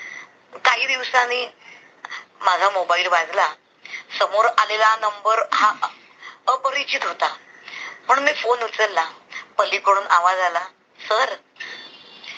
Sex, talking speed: male, 90 wpm